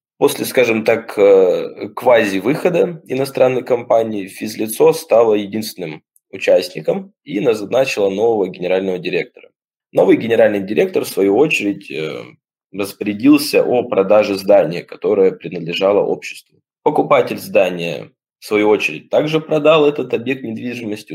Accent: native